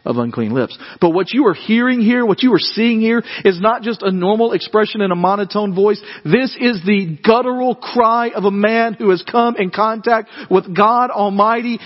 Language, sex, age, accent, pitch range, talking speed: English, male, 40-59, American, 200-265 Hz, 205 wpm